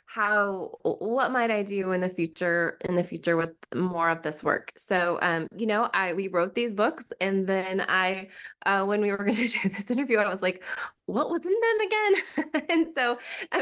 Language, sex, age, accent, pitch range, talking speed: English, female, 20-39, American, 170-225 Hz, 205 wpm